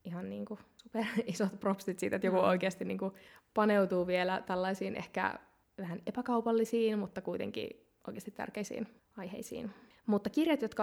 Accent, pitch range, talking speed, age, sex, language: native, 190-230 Hz, 135 wpm, 20-39, female, Finnish